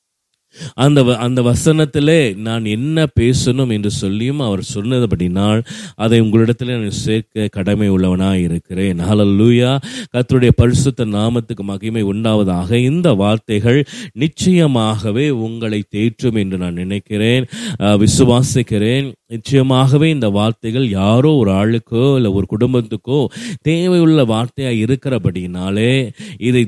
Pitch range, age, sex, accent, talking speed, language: 105-130 Hz, 30-49, male, native, 95 wpm, Tamil